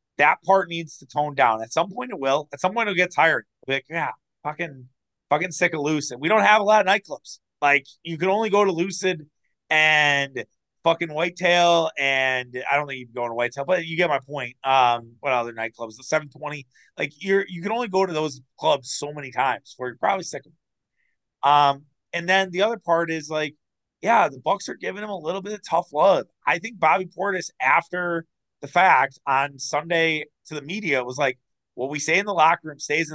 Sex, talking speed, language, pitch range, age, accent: male, 225 wpm, English, 135-175 Hz, 30-49, American